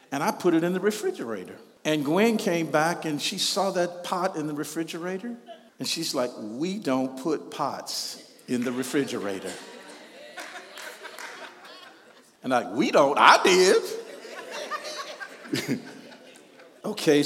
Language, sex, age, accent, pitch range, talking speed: English, male, 50-69, American, 130-190 Hz, 130 wpm